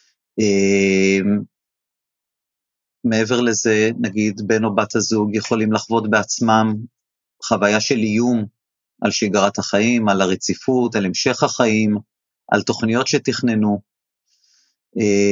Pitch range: 105-120 Hz